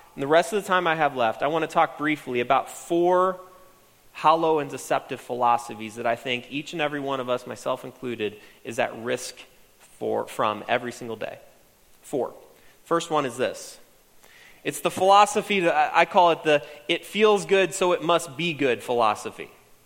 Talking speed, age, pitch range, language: 185 wpm, 30-49, 140-170 Hz, English